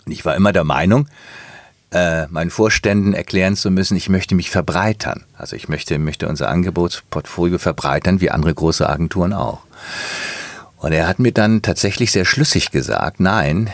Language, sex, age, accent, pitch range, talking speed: German, male, 50-69, German, 80-110 Hz, 160 wpm